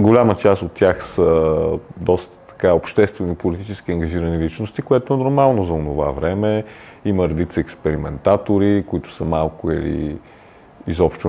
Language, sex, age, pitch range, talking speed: Bulgarian, male, 30-49, 90-115 Hz, 120 wpm